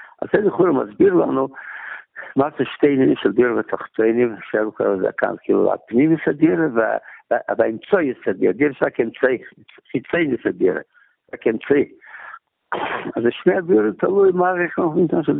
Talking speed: 130 wpm